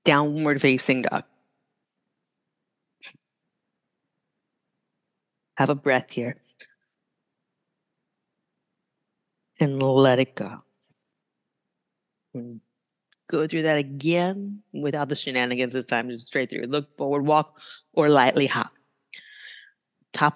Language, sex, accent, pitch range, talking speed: English, female, American, 150-205 Hz, 90 wpm